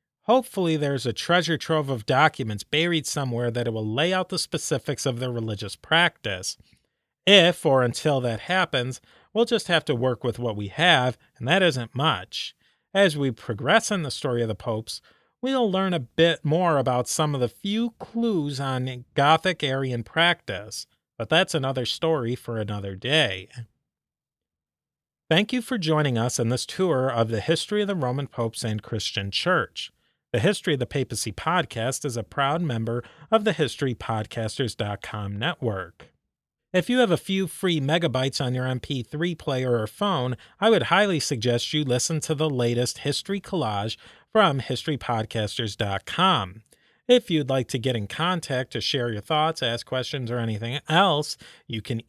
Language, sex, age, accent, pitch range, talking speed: English, male, 40-59, American, 115-165 Hz, 165 wpm